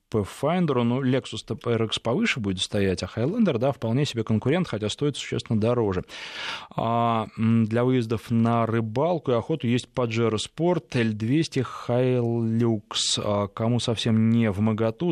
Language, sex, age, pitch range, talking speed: Russian, male, 20-39, 105-120 Hz, 145 wpm